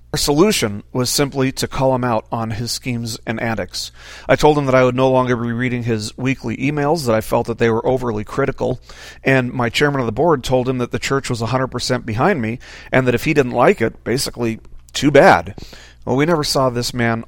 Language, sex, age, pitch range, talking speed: English, male, 40-59, 110-135 Hz, 225 wpm